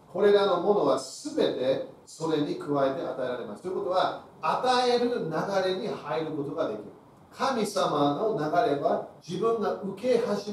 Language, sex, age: Japanese, male, 40-59